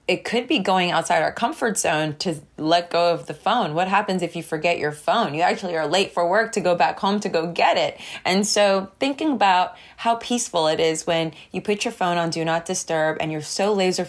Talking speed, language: 240 wpm, English